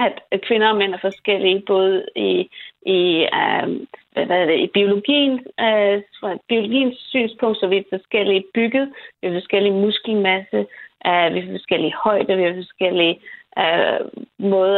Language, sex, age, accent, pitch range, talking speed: Danish, female, 30-49, native, 185-220 Hz, 150 wpm